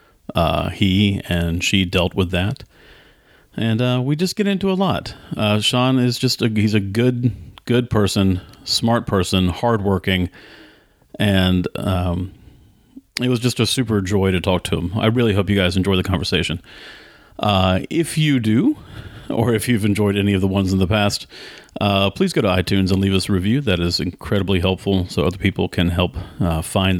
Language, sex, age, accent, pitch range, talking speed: English, male, 40-59, American, 95-115 Hz, 185 wpm